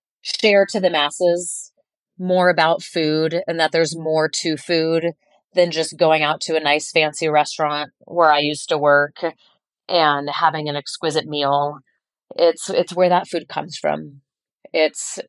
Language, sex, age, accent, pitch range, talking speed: English, female, 30-49, American, 150-180 Hz, 155 wpm